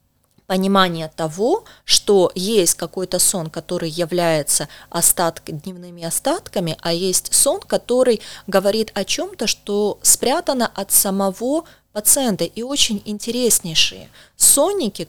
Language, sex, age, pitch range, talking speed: Russian, female, 20-39, 175-220 Hz, 105 wpm